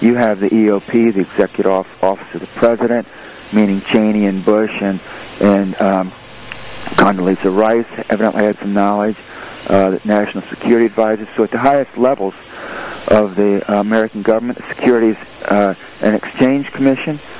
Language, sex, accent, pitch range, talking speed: English, male, American, 100-115 Hz, 150 wpm